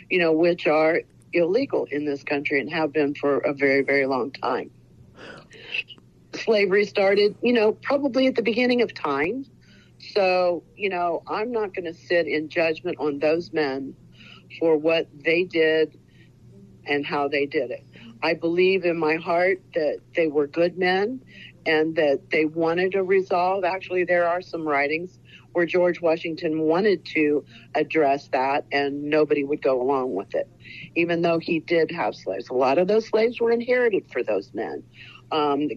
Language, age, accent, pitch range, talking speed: English, 50-69, American, 155-185 Hz, 170 wpm